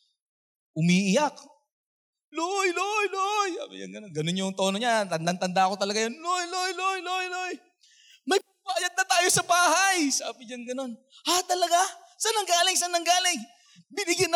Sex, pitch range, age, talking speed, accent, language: male, 190-315 Hz, 20-39, 140 wpm, native, Filipino